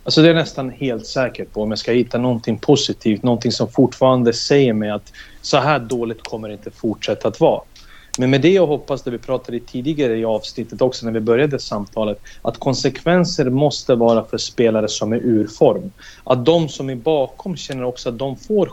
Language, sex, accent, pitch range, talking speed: Swedish, male, native, 120-155 Hz, 200 wpm